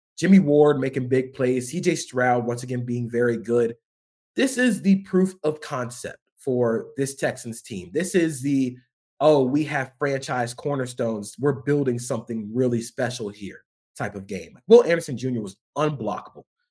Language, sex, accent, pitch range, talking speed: English, male, American, 115-155 Hz, 160 wpm